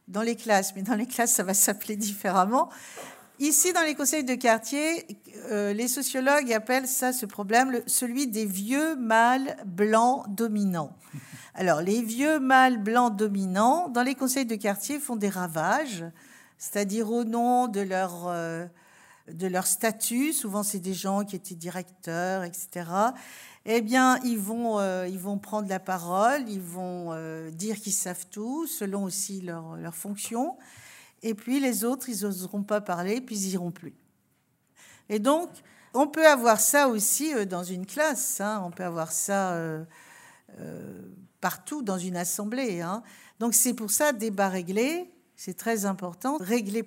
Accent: French